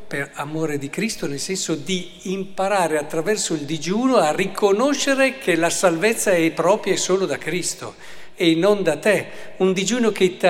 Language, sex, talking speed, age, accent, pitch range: Italian, male, 170 wpm, 50-69, native, 150-205 Hz